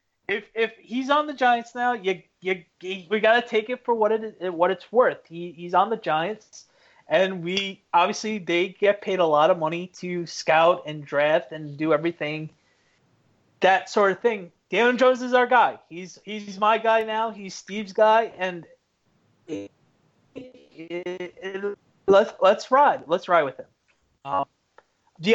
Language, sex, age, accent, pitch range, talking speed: English, male, 30-49, American, 155-215 Hz, 170 wpm